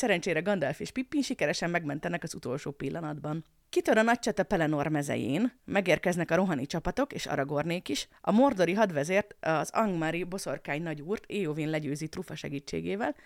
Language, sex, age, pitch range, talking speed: Hungarian, female, 30-49, 155-220 Hz, 150 wpm